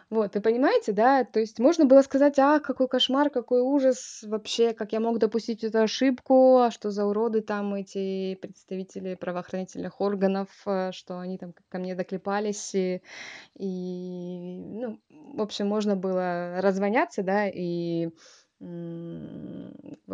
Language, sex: Russian, female